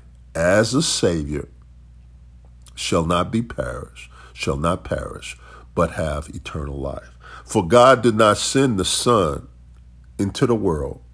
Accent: American